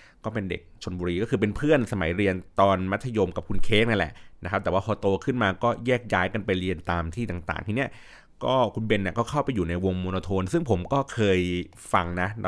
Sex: male